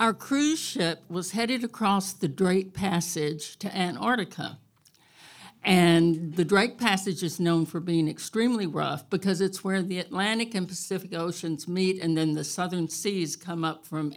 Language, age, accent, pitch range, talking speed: English, 60-79, American, 160-195 Hz, 160 wpm